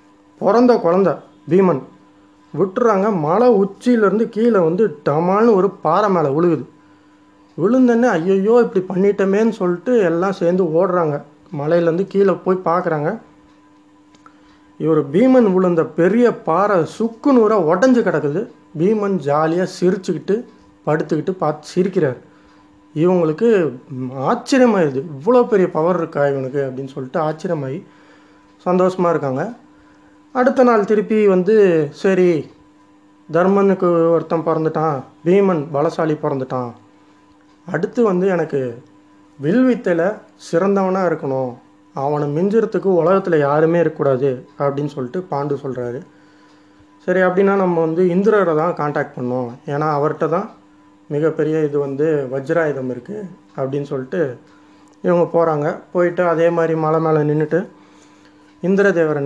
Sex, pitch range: male, 130-190 Hz